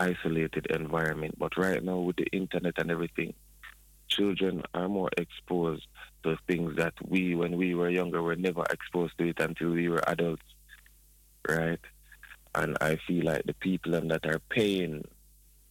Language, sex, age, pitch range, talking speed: Dutch, male, 30-49, 75-85 Hz, 155 wpm